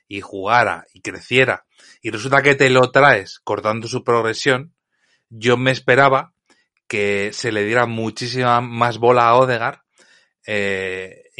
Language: Spanish